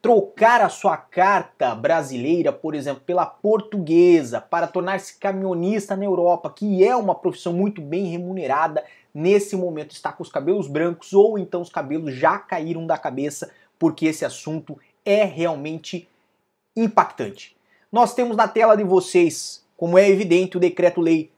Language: Portuguese